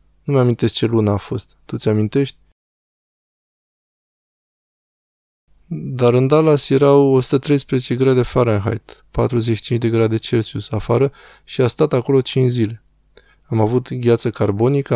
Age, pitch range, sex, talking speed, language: 20-39, 105-125 Hz, male, 120 wpm, Romanian